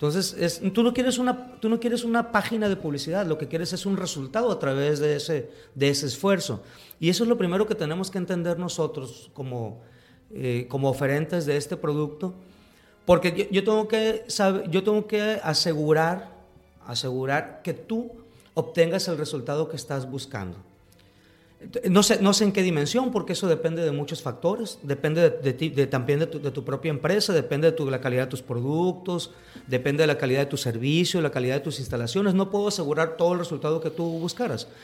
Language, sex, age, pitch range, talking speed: Spanish, male, 40-59, 145-190 Hz, 205 wpm